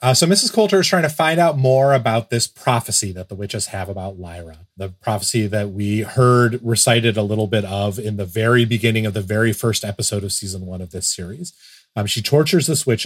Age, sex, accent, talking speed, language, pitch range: 30-49, male, American, 225 wpm, English, 105-140 Hz